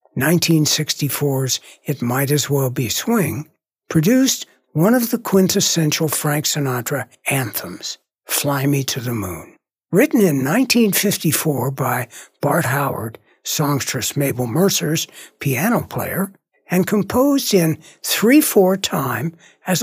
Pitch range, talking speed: 145-205 Hz, 110 wpm